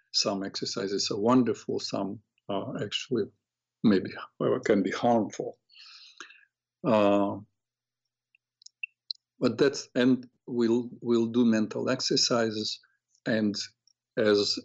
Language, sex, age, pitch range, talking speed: English, male, 50-69, 105-125 Hz, 90 wpm